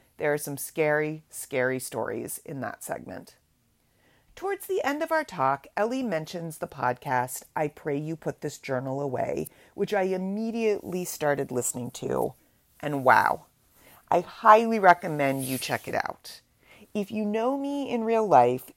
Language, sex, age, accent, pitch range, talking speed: English, female, 40-59, American, 130-185 Hz, 155 wpm